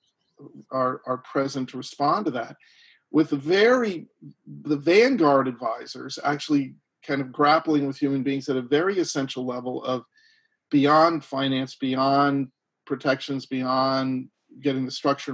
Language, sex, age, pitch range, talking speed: English, male, 40-59, 130-145 Hz, 135 wpm